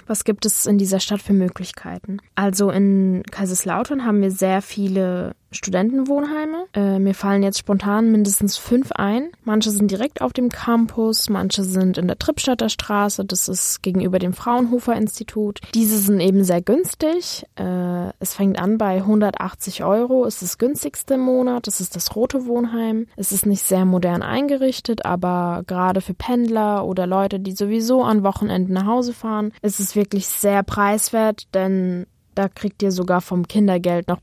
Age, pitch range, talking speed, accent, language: 20-39, 190-225 Hz, 165 wpm, German, German